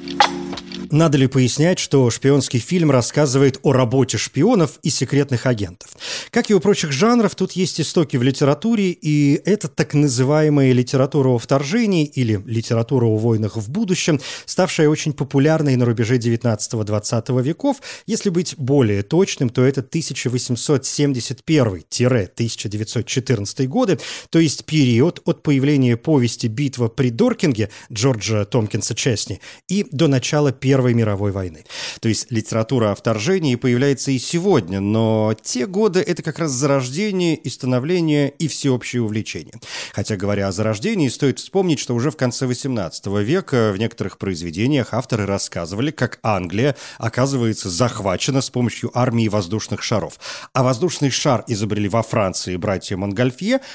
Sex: male